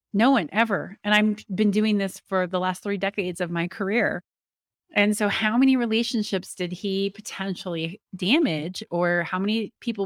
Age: 30-49